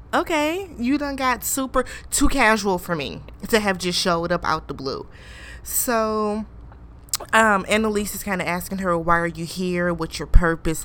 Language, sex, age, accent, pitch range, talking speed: English, female, 20-39, American, 170-195 Hz, 175 wpm